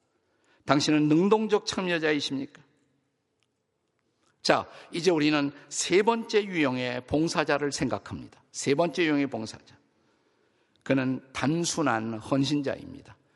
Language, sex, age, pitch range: Korean, male, 50-69, 135-175 Hz